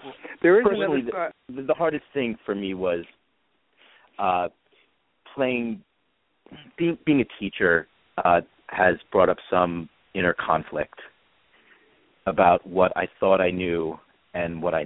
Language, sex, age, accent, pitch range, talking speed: English, male, 40-59, American, 85-100 Hz, 130 wpm